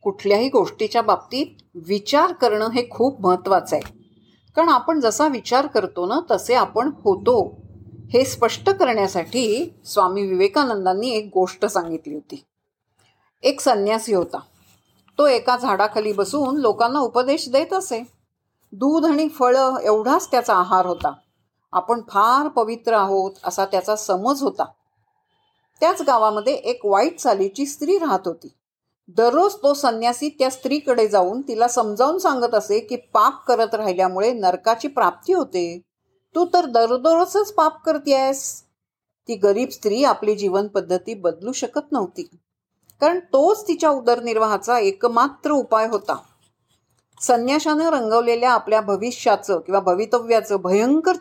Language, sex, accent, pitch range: Marathi, female, native, 205-290 Hz